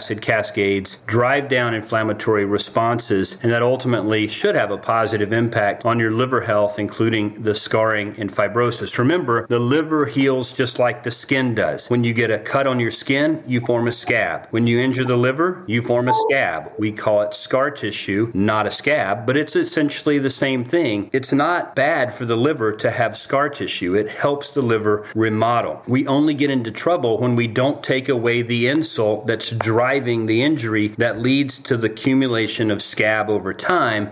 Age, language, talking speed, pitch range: 40-59, English, 190 wpm, 110-130 Hz